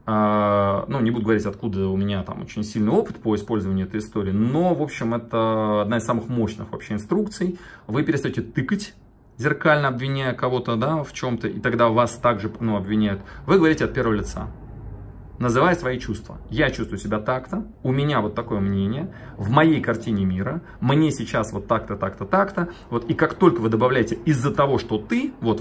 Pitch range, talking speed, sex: 105-135 Hz, 185 wpm, male